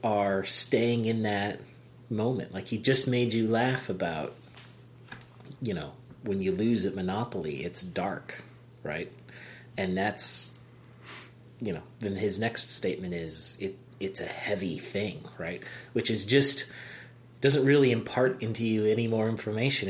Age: 30-49